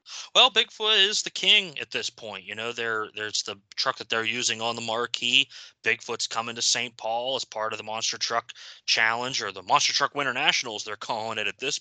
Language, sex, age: English, male, 20-39